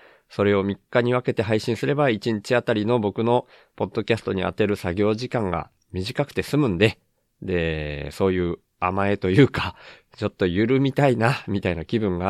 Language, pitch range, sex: Japanese, 90-120 Hz, male